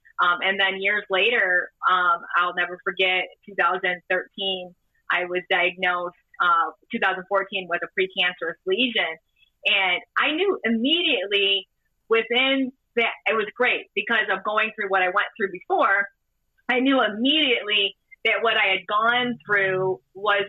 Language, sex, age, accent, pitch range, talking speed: English, female, 30-49, American, 180-225 Hz, 140 wpm